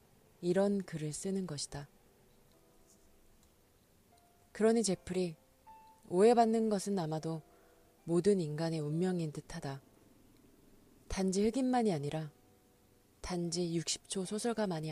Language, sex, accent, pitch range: Korean, female, native, 140-200 Hz